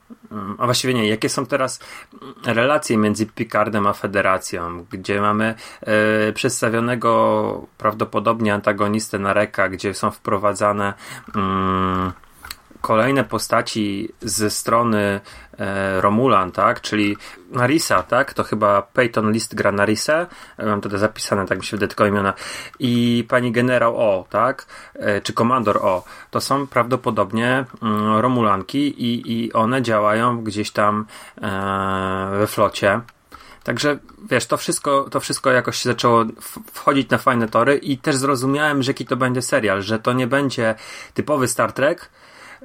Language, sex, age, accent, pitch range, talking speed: Polish, male, 30-49, native, 105-130 Hz, 140 wpm